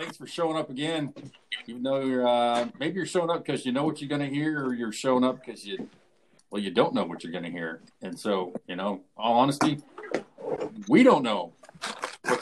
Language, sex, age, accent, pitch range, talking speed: English, male, 40-59, American, 125-165 Hz, 215 wpm